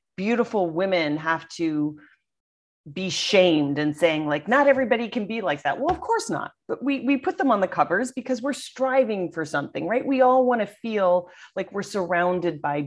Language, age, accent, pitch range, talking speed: English, 30-49, American, 150-225 Hz, 195 wpm